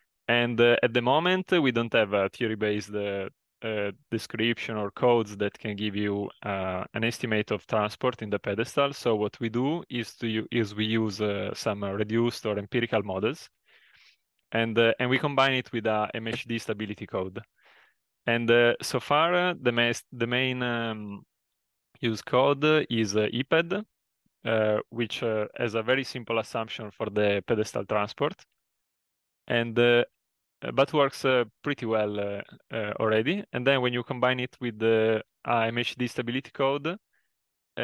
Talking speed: 165 wpm